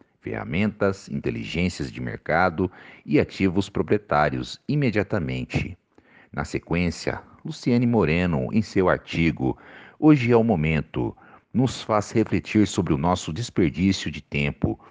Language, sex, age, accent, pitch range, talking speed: Portuguese, male, 50-69, Brazilian, 80-110 Hz, 115 wpm